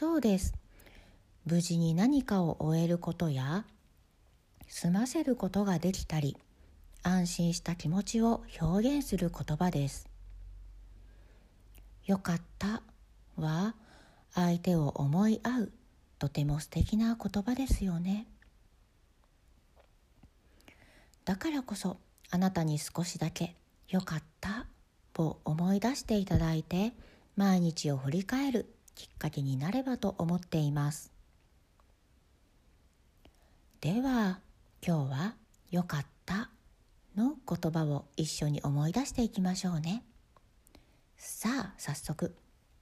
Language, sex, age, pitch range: Japanese, female, 50-69, 145-205 Hz